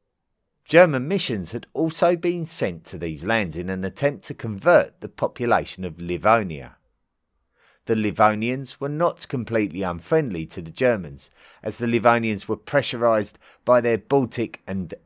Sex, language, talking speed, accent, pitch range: male, English, 145 wpm, British, 95-140 Hz